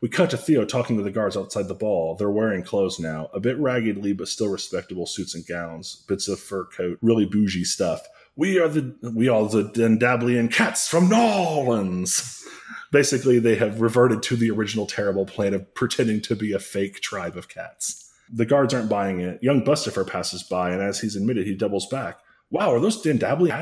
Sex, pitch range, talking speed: male, 95-120 Hz, 200 wpm